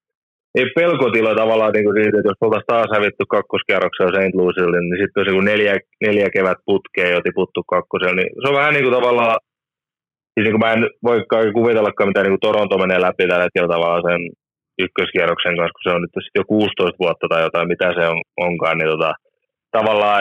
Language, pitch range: Finnish, 95-125 Hz